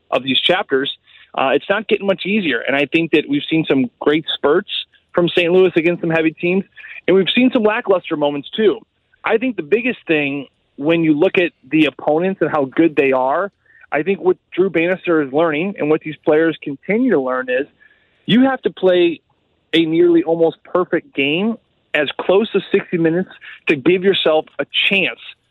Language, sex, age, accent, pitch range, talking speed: English, male, 30-49, American, 155-200 Hz, 195 wpm